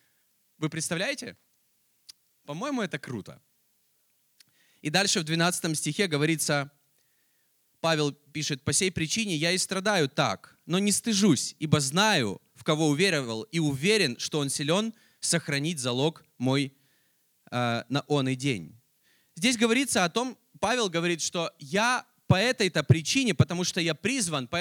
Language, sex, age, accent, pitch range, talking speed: Russian, male, 20-39, native, 150-210 Hz, 140 wpm